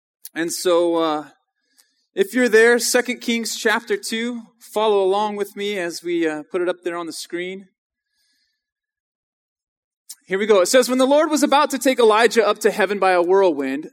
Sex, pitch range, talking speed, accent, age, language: male, 205-280 Hz, 185 wpm, American, 20-39, English